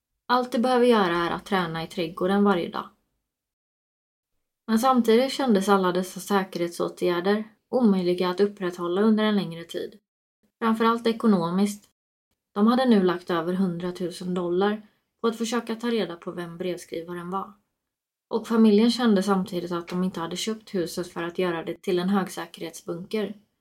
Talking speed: 150 wpm